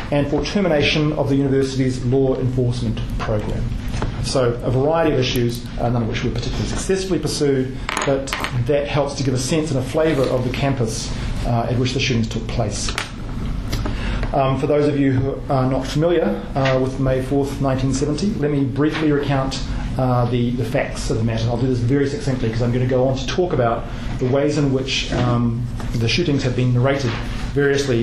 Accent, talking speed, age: Australian, 195 wpm, 40-59